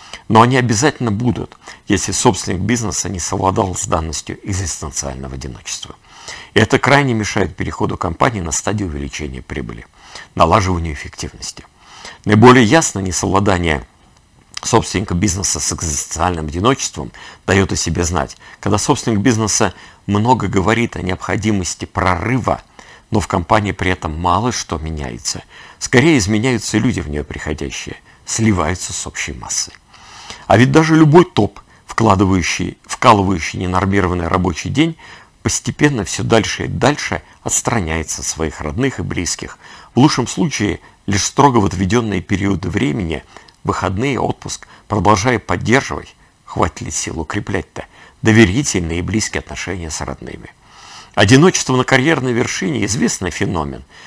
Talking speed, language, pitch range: 125 wpm, Russian, 85-115 Hz